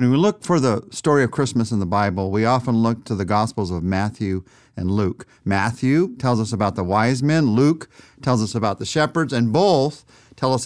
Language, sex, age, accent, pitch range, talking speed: English, male, 50-69, American, 110-140 Hz, 215 wpm